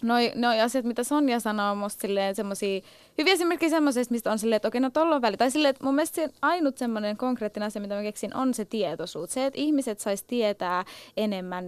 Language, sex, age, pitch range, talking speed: Finnish, female, 20-39, 195-250 Hz, 225 wpm